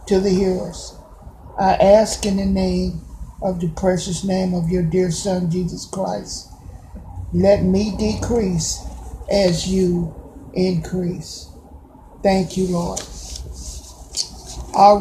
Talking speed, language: 110 wpm, English